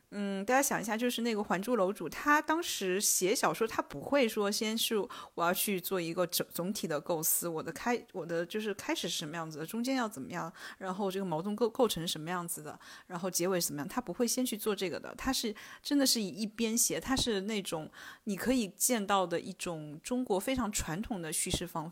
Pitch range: 180-250 Hz